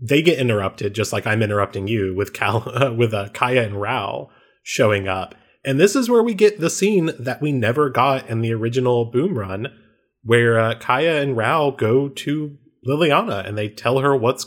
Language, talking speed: English, 200 wpm